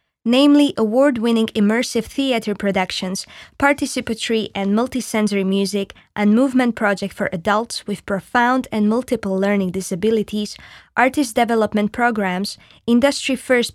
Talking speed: 105 wpm